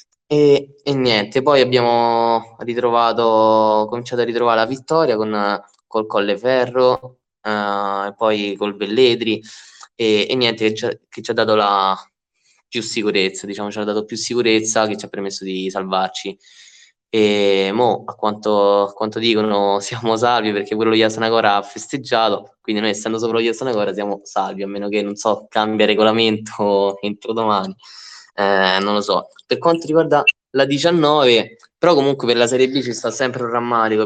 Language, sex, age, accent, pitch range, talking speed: Italian, male, 10-29, native, 105-120 Hz, 165 wpm